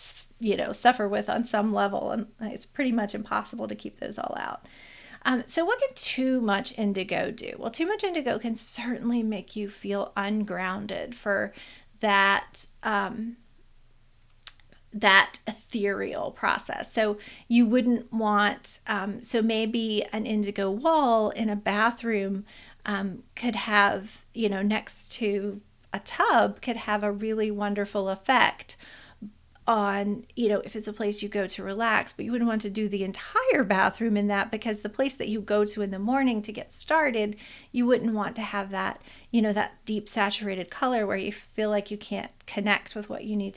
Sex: female